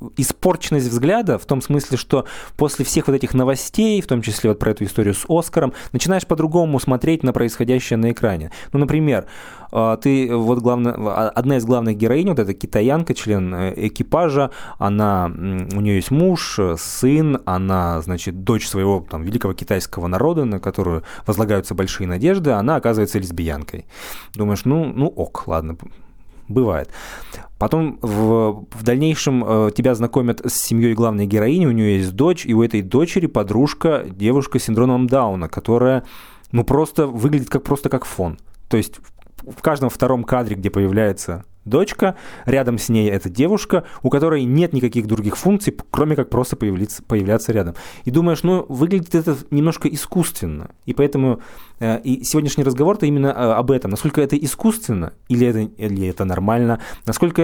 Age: 20-39